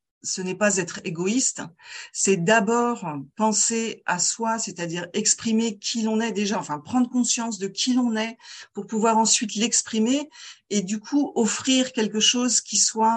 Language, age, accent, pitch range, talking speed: French, 40-59, French, 190-235 Hz, 160 wpm